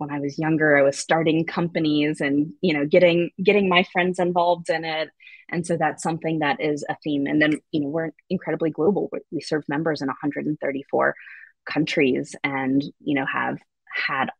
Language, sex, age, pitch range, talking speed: English, female, 20-39, 140-155 Hz, 185 wpm